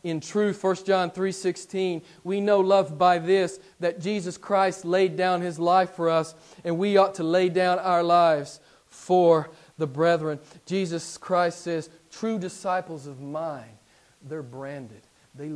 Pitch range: 130-175 Hz